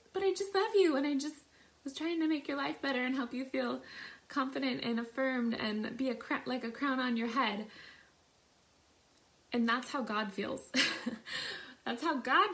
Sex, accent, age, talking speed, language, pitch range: female, American, 20-39, 190 wpm, English, 220-275 Hz